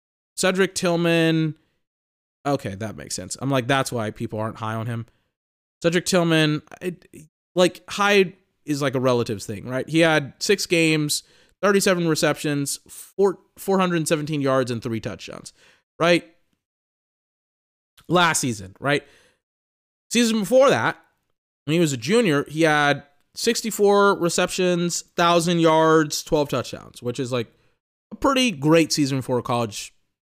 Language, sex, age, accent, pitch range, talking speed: English, male, 20-39, American, 125-175 Hz, 130 wpm